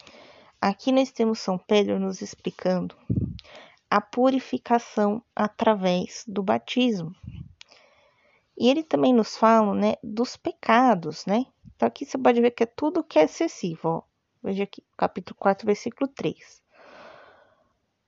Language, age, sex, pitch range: Portuguese, 20-39, female, 195-250 Hz